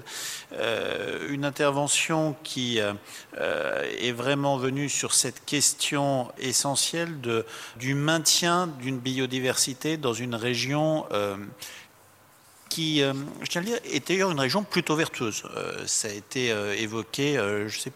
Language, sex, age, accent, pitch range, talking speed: French, male, 50-69, French, 120-160 Hz, 145 wpm